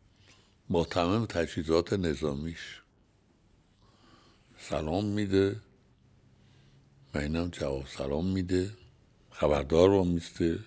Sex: male